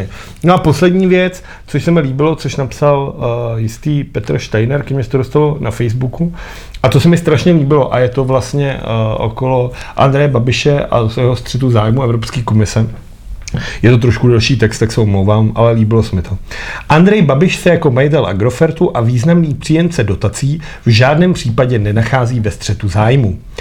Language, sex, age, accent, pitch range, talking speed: Czech, male, 40-59, native, 120-170 Hz, 180 wpm